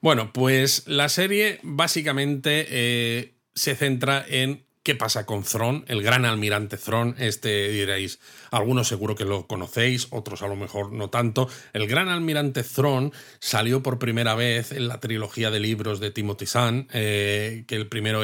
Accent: Spanish